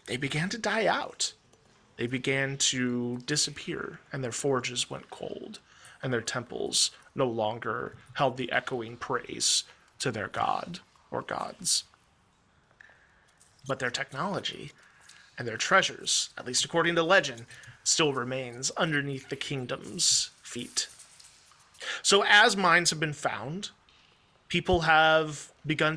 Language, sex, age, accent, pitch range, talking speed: English, male, 30-49, American, 130-165 Hz, 125 wpm